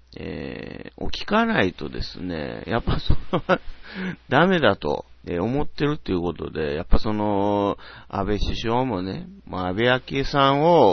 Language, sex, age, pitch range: Japanese, male, 40-59, 95-140 Hz